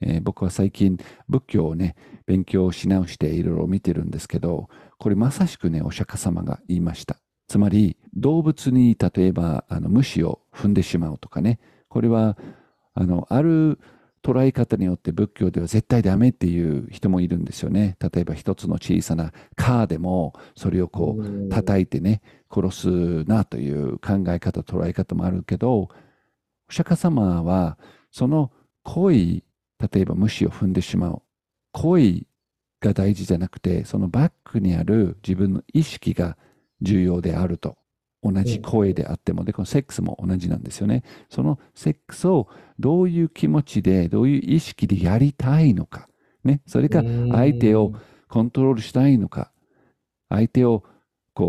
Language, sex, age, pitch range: Japanese, male, 50-69, 90-120 Hz